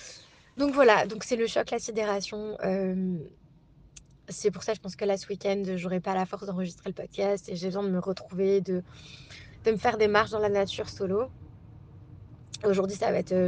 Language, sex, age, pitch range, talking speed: French, female, 20-39, 180-210 Hz, 205 wpm